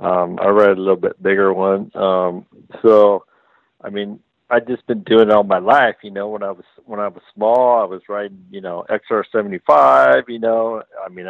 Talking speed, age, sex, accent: 205 wpm, 50-69, male, American